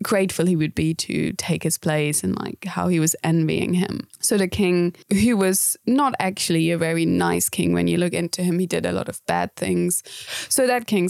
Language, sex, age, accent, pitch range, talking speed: English, female, 20-39, British, 160-190 Hz, 220 wpm